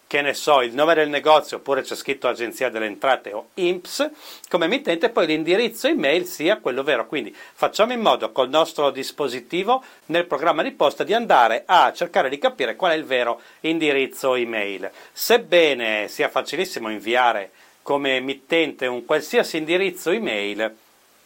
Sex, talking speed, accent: male, 160 wpm, native